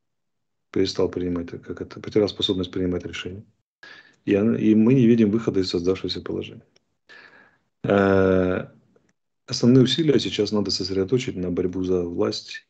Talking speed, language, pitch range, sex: 125 wpm, Russian, 90-110 Hz, male